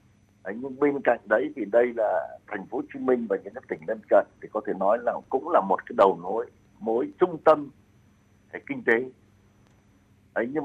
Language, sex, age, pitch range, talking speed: Vietnamese, male, 60-79, 105-145 Hz, 205 wpm